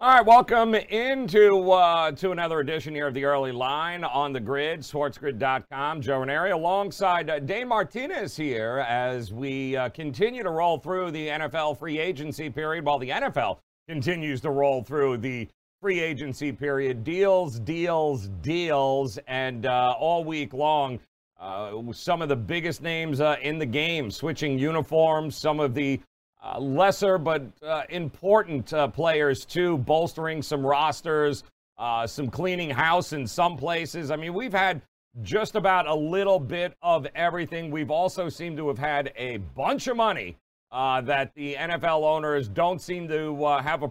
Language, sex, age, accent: English, male, 40-59, American